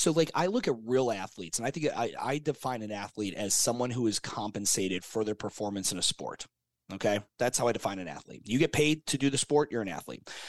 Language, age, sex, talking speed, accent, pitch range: English, 30-49, male, 245 wpm, American, 105-140 Hz